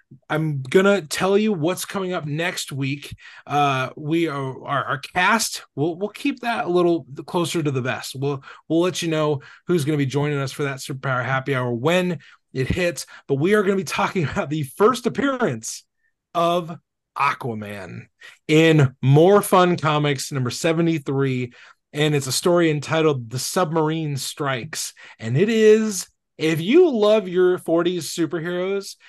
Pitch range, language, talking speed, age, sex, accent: 140-185 Hz, English, 165 wpm, 20-39, male, American